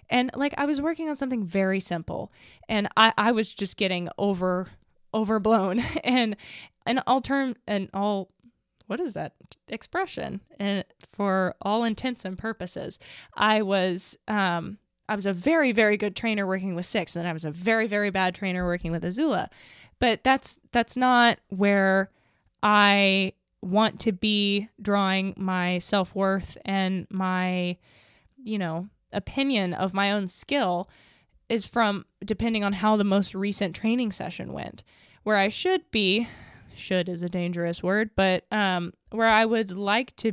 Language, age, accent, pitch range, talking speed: English, 10-29, American, 185-220 Hz, 160 wpm